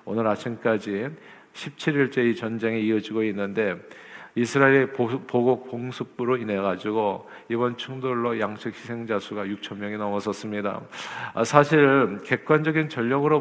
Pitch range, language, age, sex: 110-130 Hz, Korean, 40-59, male